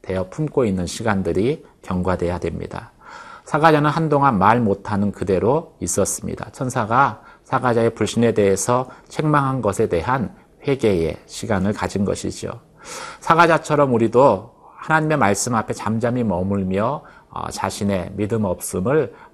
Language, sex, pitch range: Korean, male, 95-140 Hz